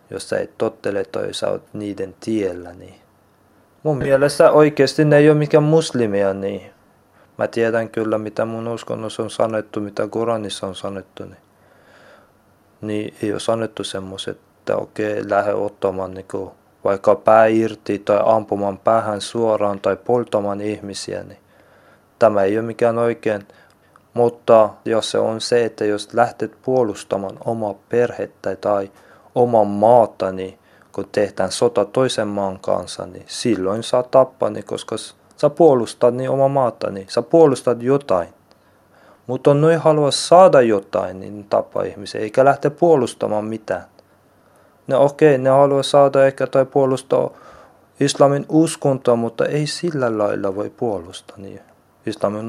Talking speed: 145 wpm